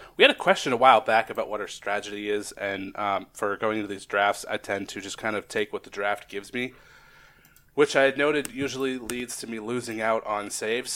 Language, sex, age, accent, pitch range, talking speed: English, male, 30-49, American, 105-125 Hz, 235 wpm